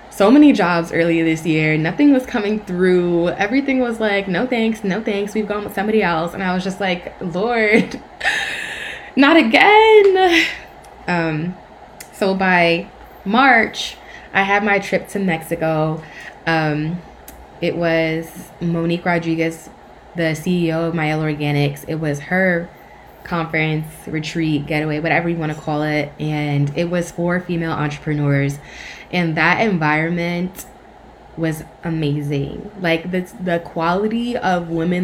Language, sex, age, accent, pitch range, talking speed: English, female, 20-39, American, 150-180 Hz, 135 wpm